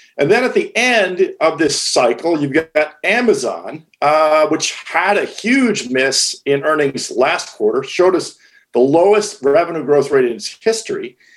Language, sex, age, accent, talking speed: English, male, 50-69, American, 165 wpm